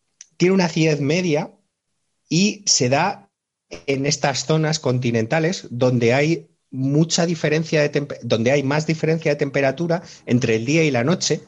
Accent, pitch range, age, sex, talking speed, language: Spanish, 115-160 Hz, 30-49, male, 150 wpm, Spanish